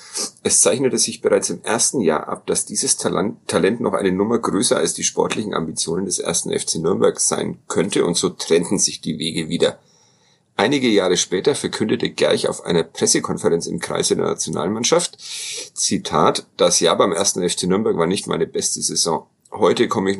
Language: German